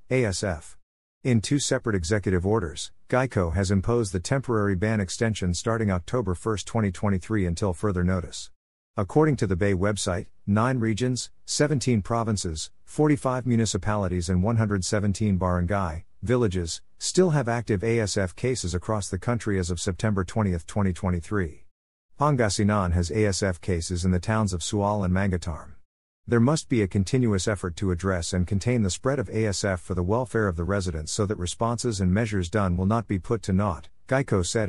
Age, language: 50-69, English